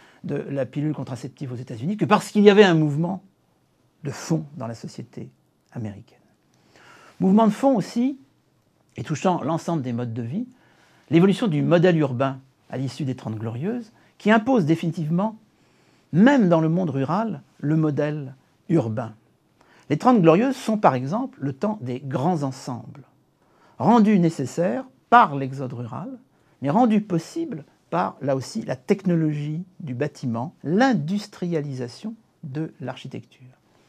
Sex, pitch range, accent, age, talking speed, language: male, 135-195 Hz, French, 60-79, 140 wpm, French